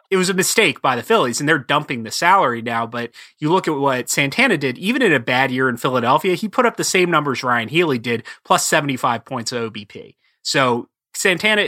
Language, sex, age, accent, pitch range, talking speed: English, male, 30-49, American, 130-170 Hz, 220 wpm